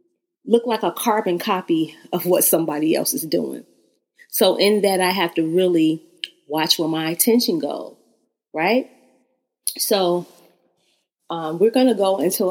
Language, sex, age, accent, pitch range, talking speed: English, female, 30-49, American, 175-230 Hz, 150 wpm